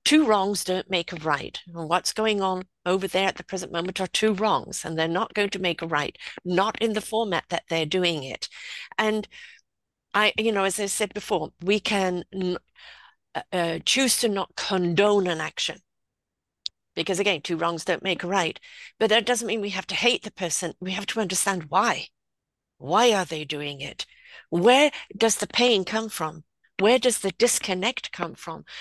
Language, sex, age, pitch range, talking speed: English, female, 50-69, 175-220 Hz, 190 wpm